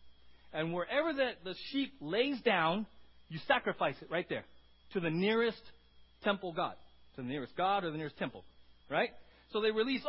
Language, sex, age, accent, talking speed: English, male, 40-59, American, 175 wpm